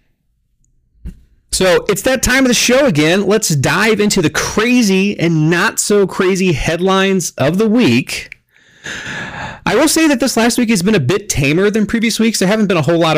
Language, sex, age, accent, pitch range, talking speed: English, male, 30-49, American, 115-185 Hz, 190 wpm